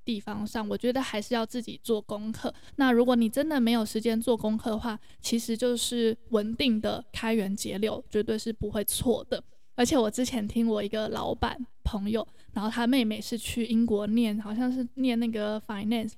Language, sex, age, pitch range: Chinese, female, 10-29, 215-245 Hz